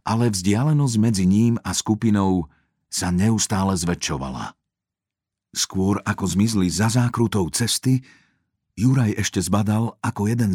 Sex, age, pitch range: male, 50-69, 90-110 Hz